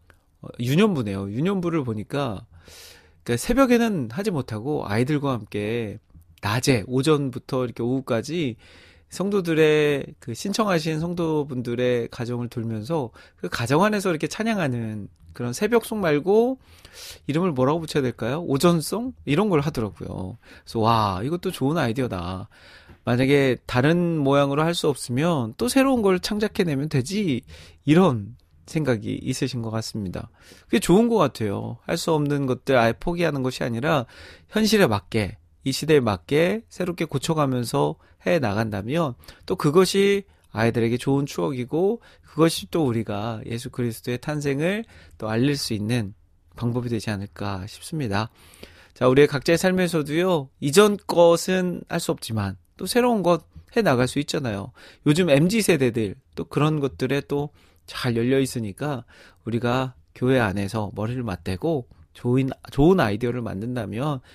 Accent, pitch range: native, 110-160 Hz